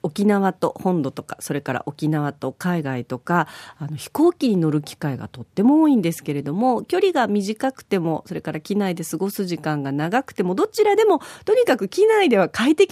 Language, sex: Japanese, female